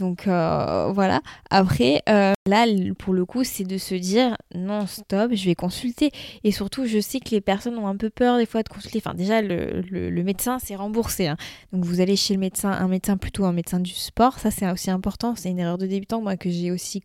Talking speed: 240 wpm